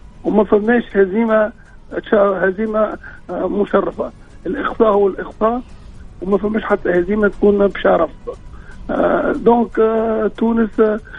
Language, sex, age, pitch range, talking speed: Arabic, male, 50-69, 195-220 Hz, 85 wpm